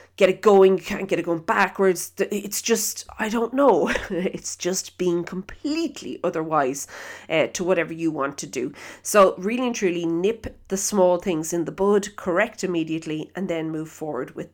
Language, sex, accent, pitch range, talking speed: English, female, Irish, 170-210 Hz, 180 wpm